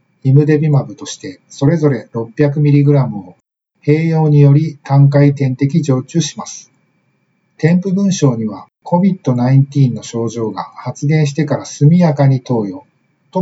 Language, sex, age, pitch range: Japanese, male, 50-69, 125-150 Hz